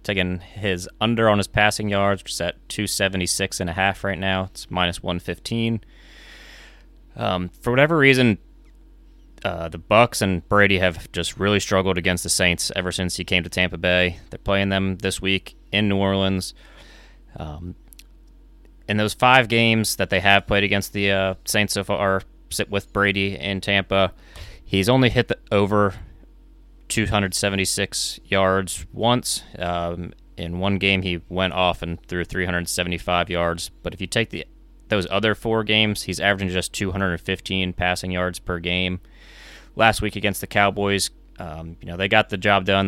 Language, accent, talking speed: English, American, 160 wpm